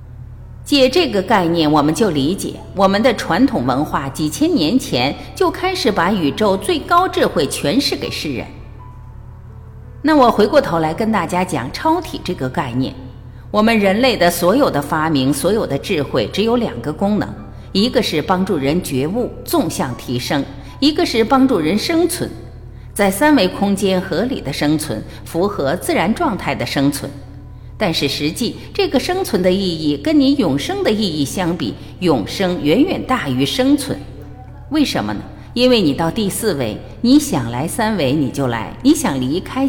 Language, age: Chinese, 50-69